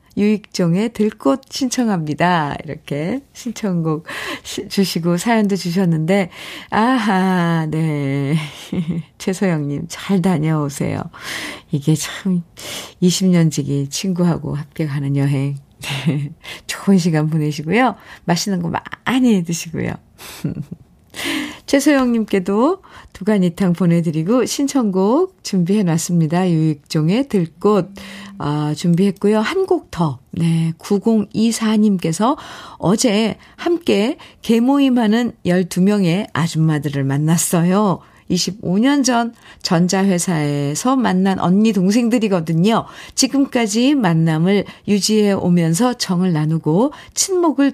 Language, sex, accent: Korean, female, native